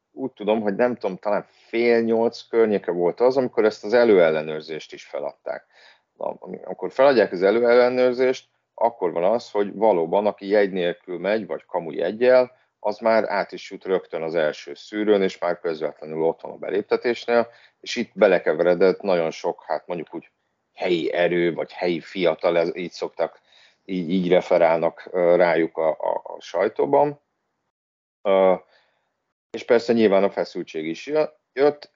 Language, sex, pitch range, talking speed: Hungarian, male, 90-130 Hz, 145 wpm